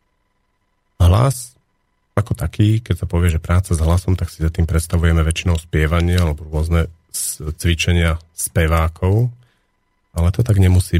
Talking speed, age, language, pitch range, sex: 135 wpm, 40-59, Slovak, 85-100 Hz, male